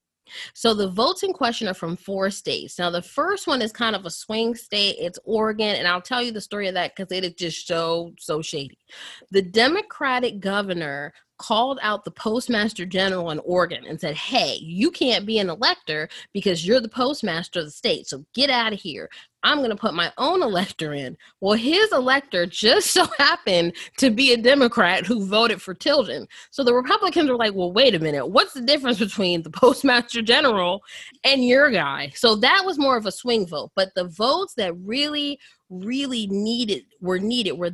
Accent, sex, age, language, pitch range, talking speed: American, female, 20-39, English, 175-245 Hz, 200 wpm